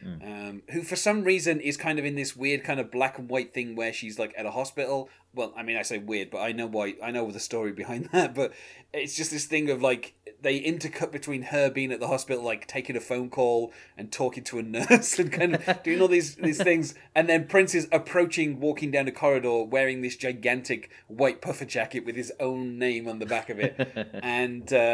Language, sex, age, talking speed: English, male, 30-49, 235 wpm